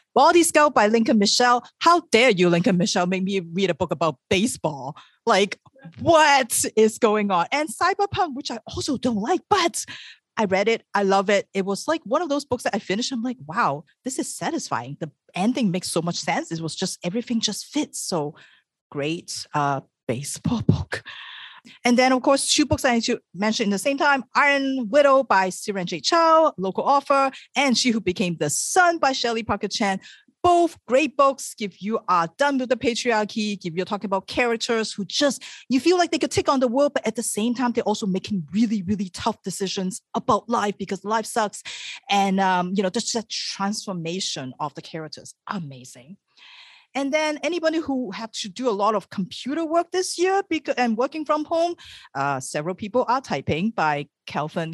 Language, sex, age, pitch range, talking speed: English, female, 30-49, 185-270 Hz, 200 wpm